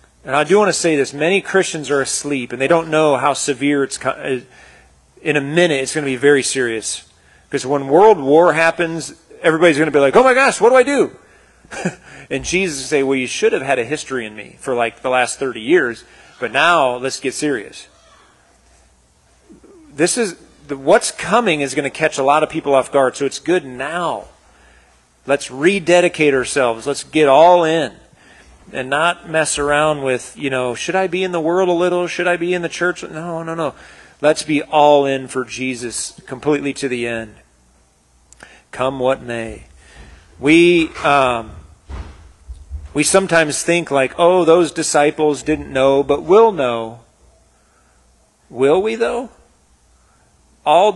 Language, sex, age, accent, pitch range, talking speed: English, male, 40-59, American, 120-165 Hz, 175 wpm